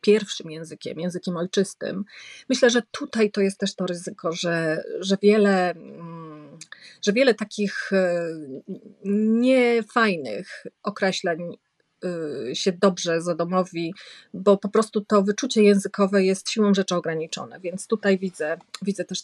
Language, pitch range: Polish, 175-220 Hz